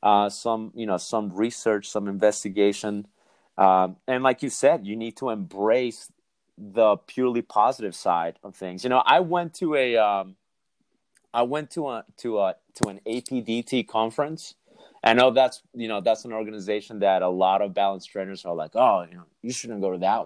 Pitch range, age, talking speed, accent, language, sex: 95-120 Hz, 30-49, 190 wpm, American, English, male